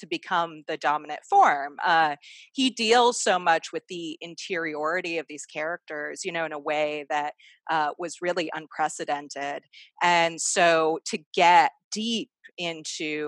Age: 30-49